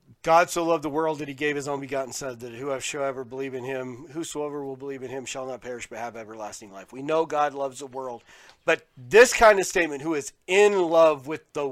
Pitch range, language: 135-165 Hz, English